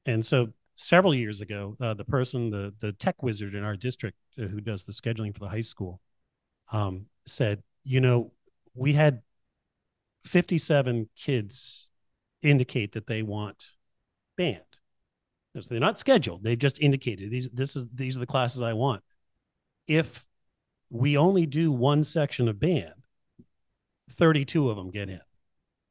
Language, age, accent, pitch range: English, 40-59, American, 110-135 Hz